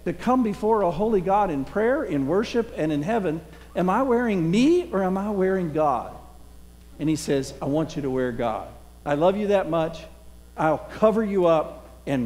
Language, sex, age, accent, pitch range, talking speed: English, male, 50-69, American, 115-190 Hz, 200 wpm